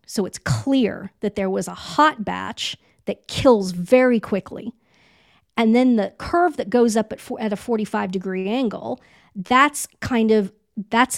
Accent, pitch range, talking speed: American, 200-245 Hz, 160 wpm